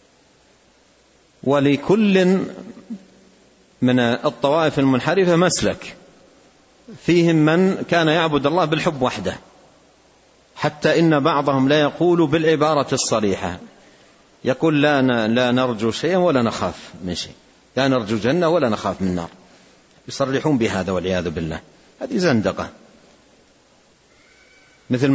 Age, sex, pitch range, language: 50-69, male, 125-165 Hz, Arabic